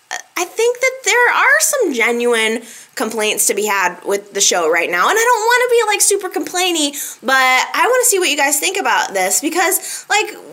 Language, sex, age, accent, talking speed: English, female, 20-39, American, 215 wpm